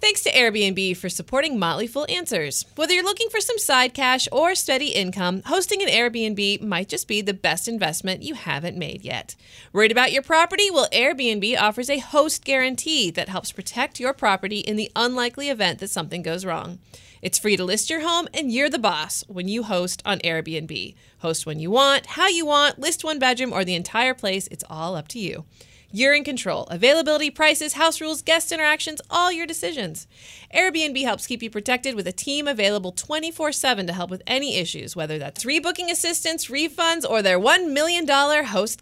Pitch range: 190-310 Hz